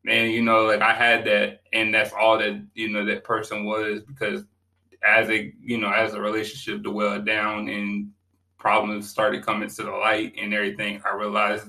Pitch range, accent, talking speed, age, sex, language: 100-115 Hz, American, 190 wpm, 20-39, male, English